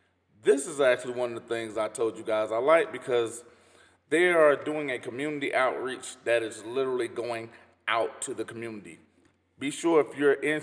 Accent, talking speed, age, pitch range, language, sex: American, 185 wpm, 30-49, 110-155 Hz, English, male